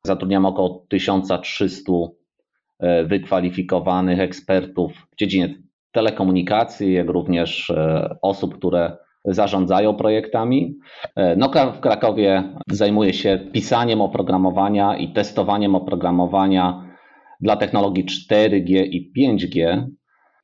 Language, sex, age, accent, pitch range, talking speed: Polish, male, 30-49, native, 90-100 Hz, 90 wpm